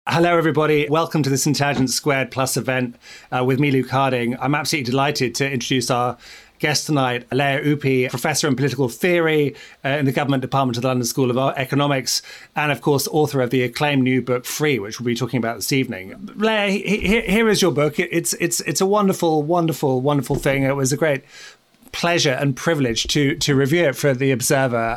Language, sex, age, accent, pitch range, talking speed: English, male, 30-49, British, 130-160 Hz, 205 wpm